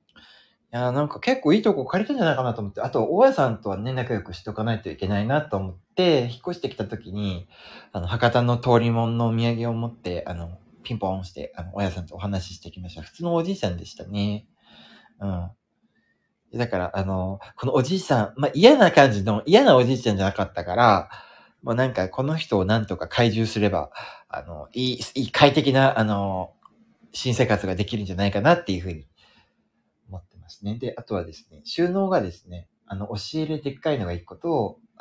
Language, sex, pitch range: Japanese, male, 95-140 Hz